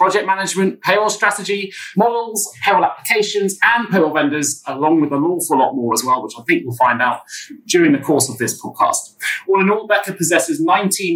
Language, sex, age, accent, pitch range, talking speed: English, male, 30-49, British, 145-220 Hz, 195 wpm